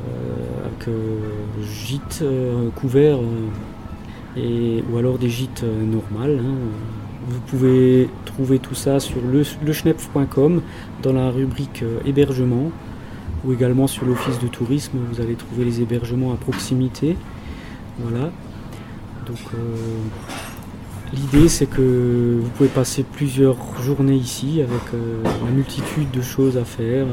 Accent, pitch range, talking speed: French, 115-135 Hz, 135 wpm